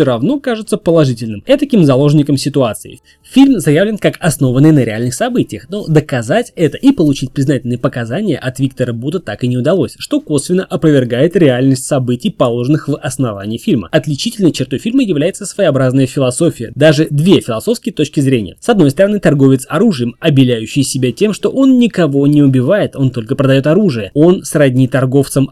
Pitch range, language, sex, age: 130-185 Hz, Russian, male, 20-39